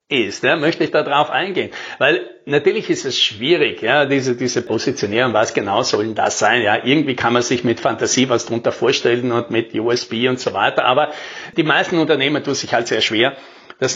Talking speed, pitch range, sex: 200 wpm, 130-185 Hz, male